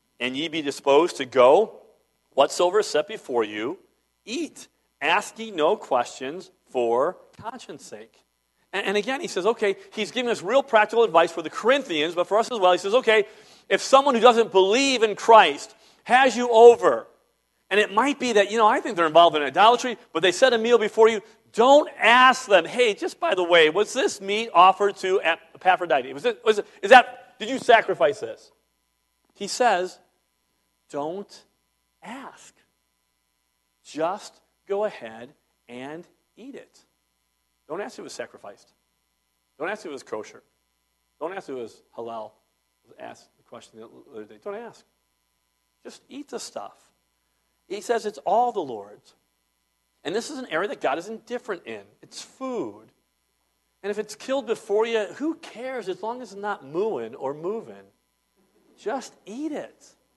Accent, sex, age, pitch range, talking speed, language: American, male, 40-59, 160-250 Hz, 165 wpm, English